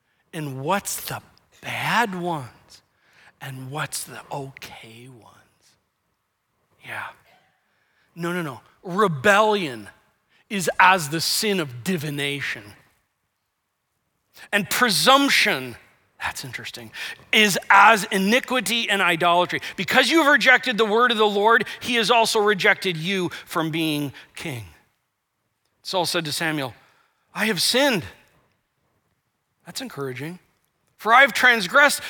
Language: English